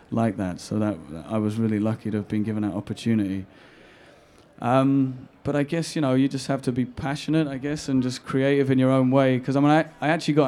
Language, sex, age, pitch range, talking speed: English, male, 30-49, 110-130 Hz, 240 wpm